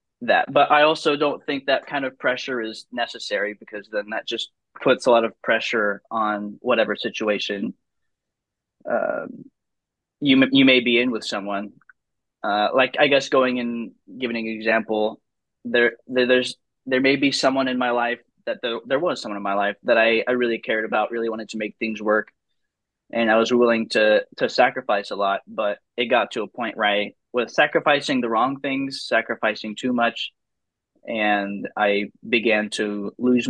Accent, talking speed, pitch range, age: American, 180 wpm, 105-130 Hz, 20-39